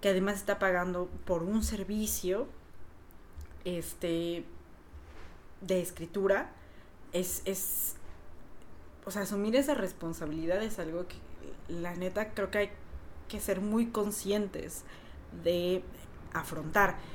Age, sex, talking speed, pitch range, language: 20-39, female, 110 wpm, 165-215 Hz, Spanish